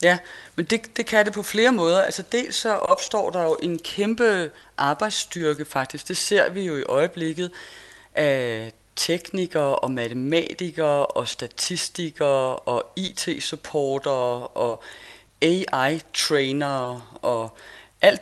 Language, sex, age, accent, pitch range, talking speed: Danish, female, 30-49, native, 140-185 Hz, 125 wpm